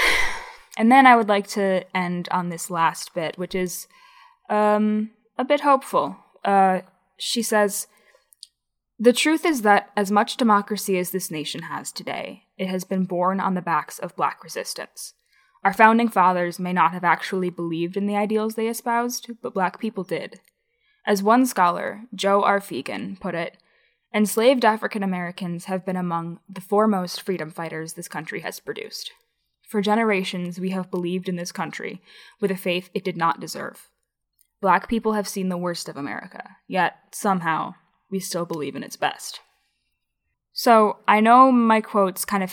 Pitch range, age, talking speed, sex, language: 180-225 Hz, 10-29, 170 wpm, female, English